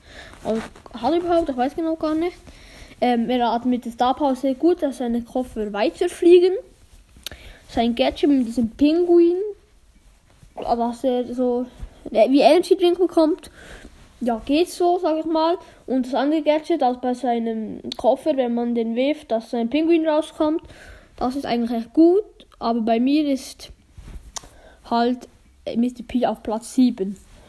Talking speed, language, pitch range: 155 wpm, German, 240-320 Hz